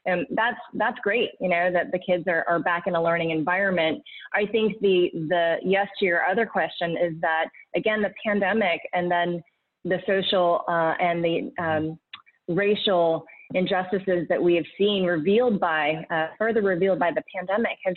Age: 20-39